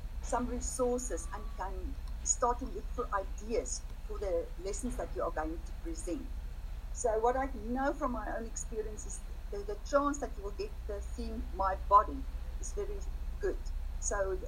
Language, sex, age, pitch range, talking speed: English, female, 50-69, 180-270 Hz, 170 wpm